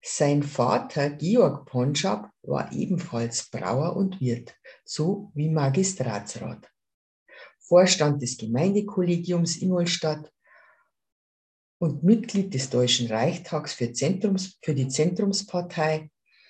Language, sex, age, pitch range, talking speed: German, female, 50-69, 125-190 Hz, 100 wpm